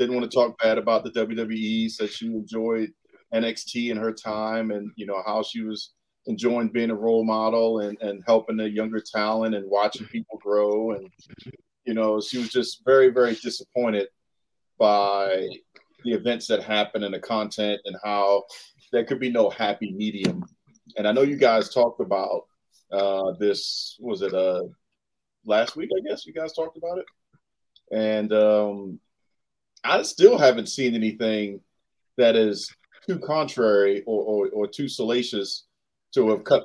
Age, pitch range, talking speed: 40-59, 100-120 Hz, 165 wpm